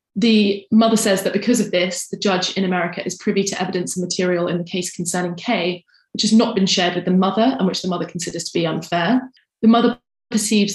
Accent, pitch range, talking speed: British, 180-210 Hz, 230 wpm